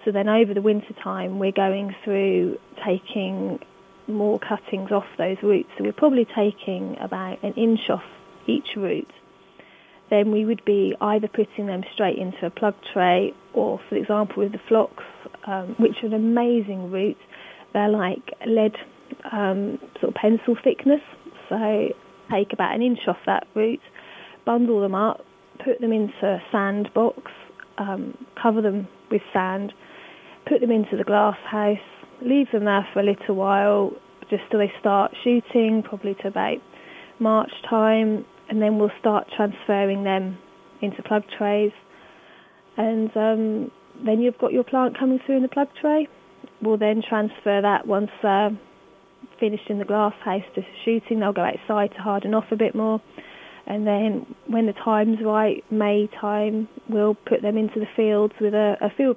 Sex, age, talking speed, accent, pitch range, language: female, 30-49, 165 wpm, British, 200-225 Hz, English